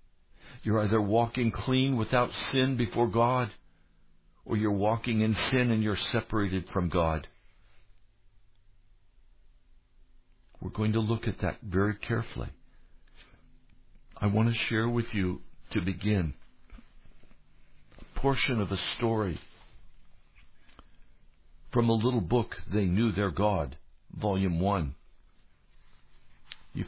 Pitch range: 90-110 Hz